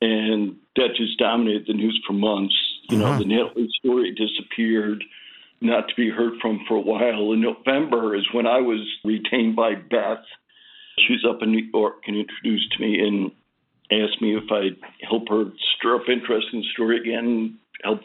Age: 60-79